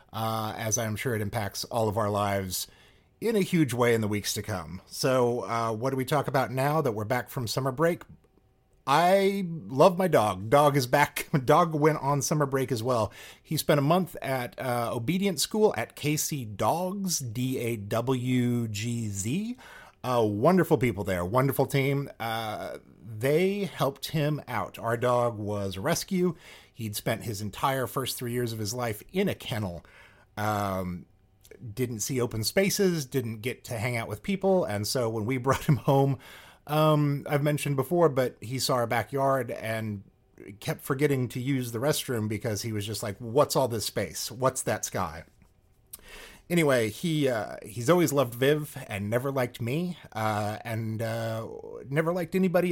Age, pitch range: 30-49, 110-145 Hz